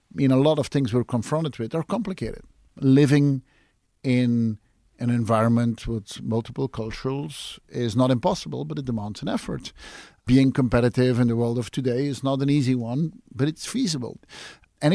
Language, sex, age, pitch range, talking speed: English, male, 50-69, 115-140 Hz, 170 wpm